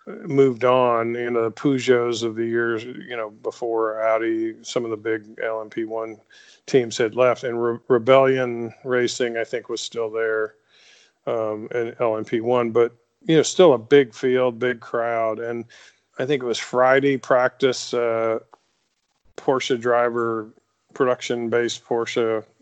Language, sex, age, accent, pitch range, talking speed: English, male, 40-59, American, 115-130 Hz, 150 wpm